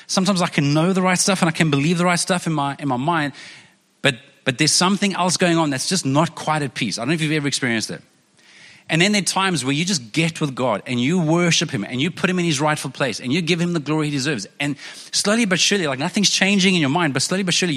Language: English